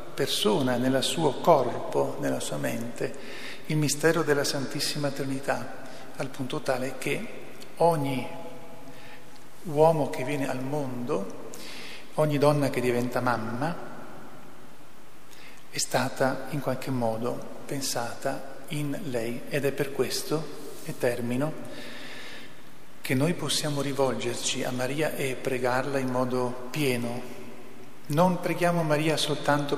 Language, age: Italian, 40-59